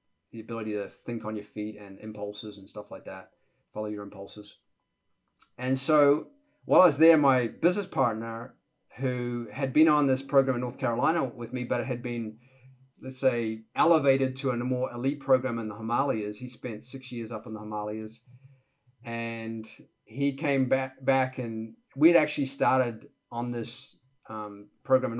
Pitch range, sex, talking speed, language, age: 110-130 Hz, male, 175 wpm, English, 30-49